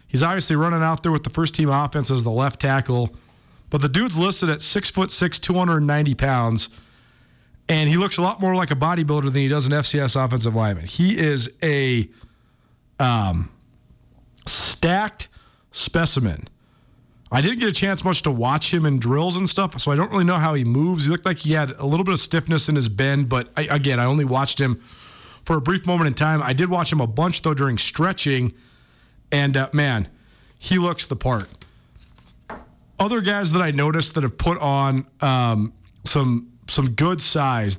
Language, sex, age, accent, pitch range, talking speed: English, male, 40-59, American, 130-170 Hz, 190 wpm